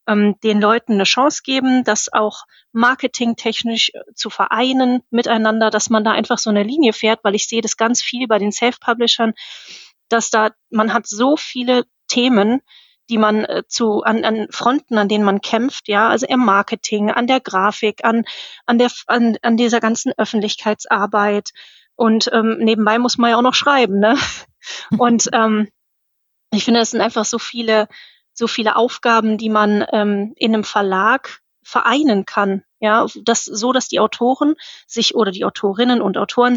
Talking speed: 165 wpm